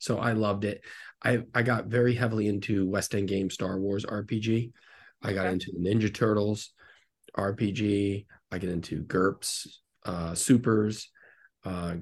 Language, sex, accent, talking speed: English, male, American, 150 wpm